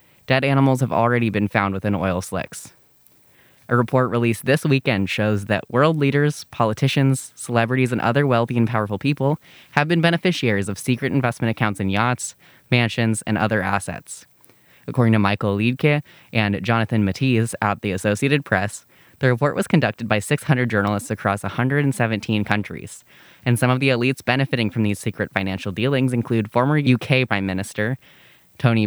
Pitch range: 105-130 Hz